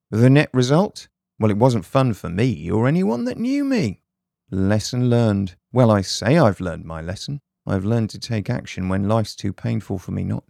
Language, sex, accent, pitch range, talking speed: English, male, British, 100-135 Hz, 200 wpm